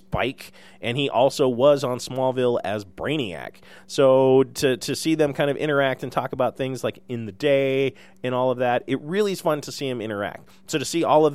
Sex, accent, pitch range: male, American, 105-135 Hz